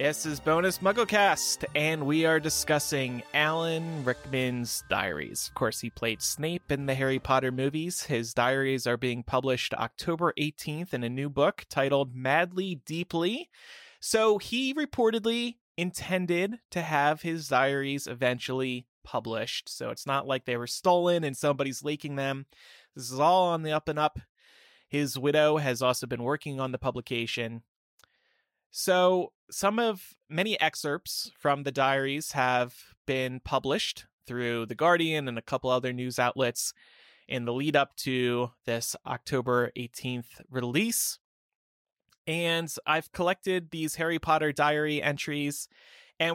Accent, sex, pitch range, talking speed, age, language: American, male, 130-170 Hz, 145 wpm, 20-39, English